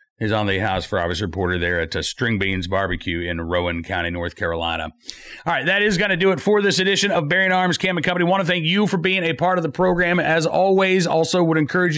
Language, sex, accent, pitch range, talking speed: English, male, American, 130-175 Hz, 260 wpm